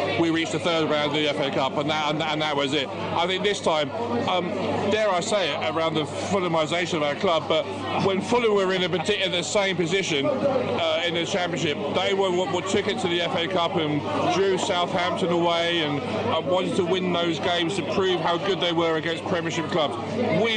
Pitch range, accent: 160-185 Hz, British